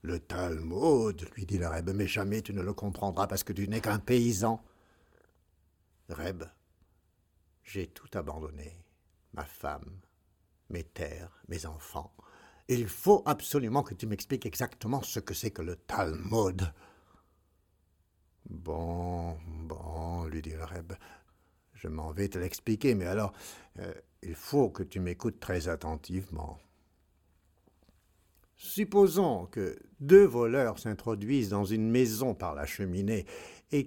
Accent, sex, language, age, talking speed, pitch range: French, male, French, 60-79, 140 wpm, 85-125 Hz